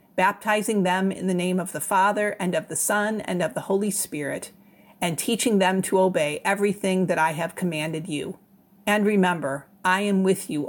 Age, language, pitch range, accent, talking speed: 50-69, English, 180-205 Hz, American, 190 wpm